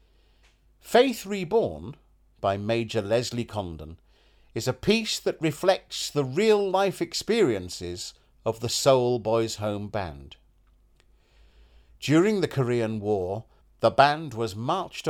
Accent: British